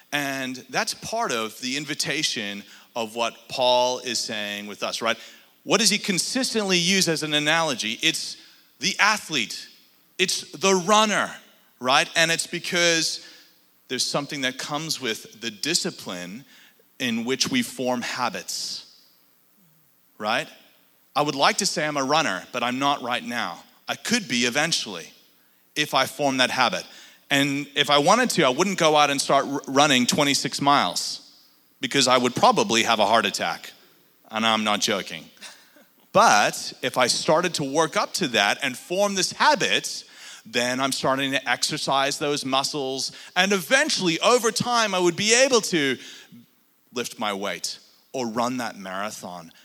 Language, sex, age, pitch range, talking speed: English, male, 30-49, 130-185 Hz, 155 wpm